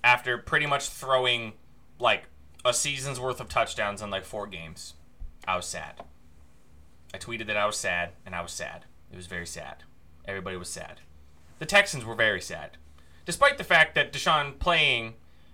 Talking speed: 175 wpm